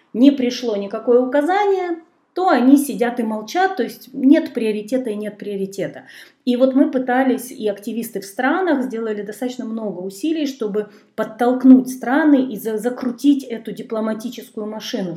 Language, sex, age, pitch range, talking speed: Russian, female, 30-49, 215-265 Hz, 140 wpm